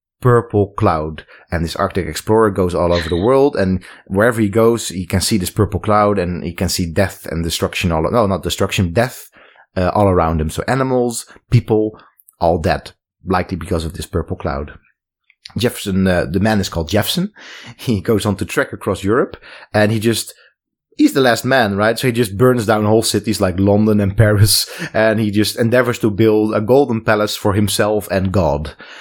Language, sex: English, male